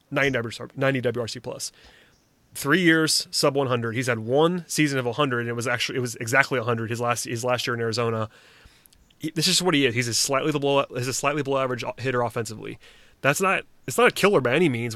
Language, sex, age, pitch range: English, male, 30-49, 120-150 Hz